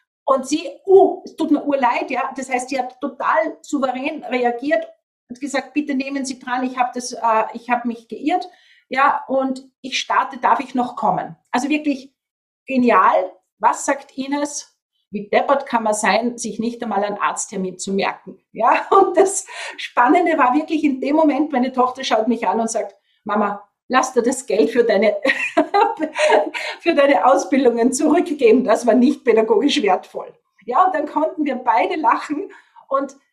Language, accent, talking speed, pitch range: German, Austrian, 170 wpm, 245-315 Hz